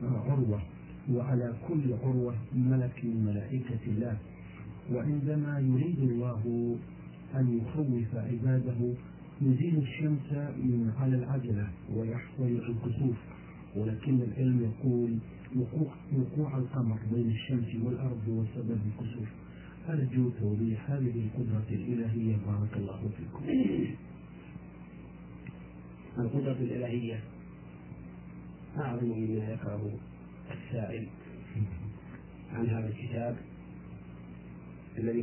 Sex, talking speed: male, 80 wpm